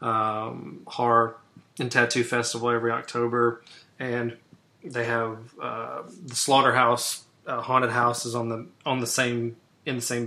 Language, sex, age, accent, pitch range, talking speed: English, male, 20-39, American, 115-125 Hz, 145 wpm